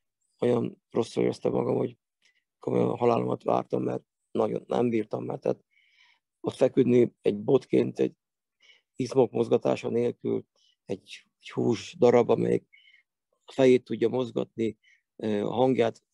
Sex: male